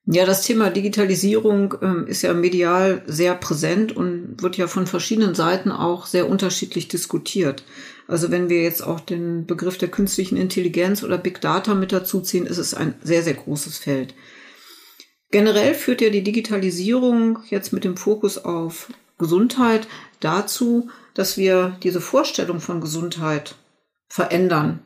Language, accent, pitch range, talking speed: German, German, 180-220 Hz, 150 wpm